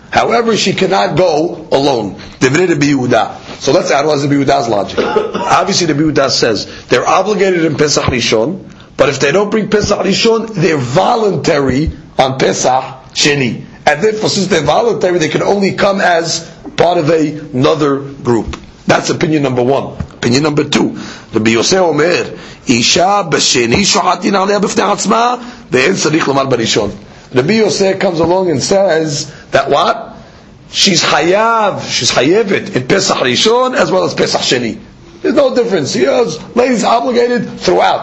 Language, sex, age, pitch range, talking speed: English, male, 40-59, 140-215 Hz, 135 wpm